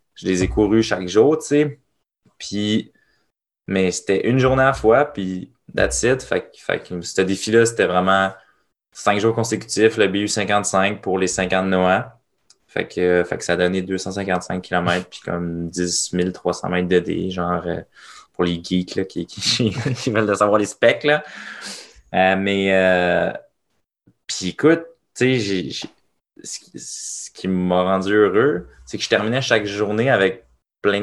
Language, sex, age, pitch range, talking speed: French, male, 20-39, 90-115 Hz, 170 wpm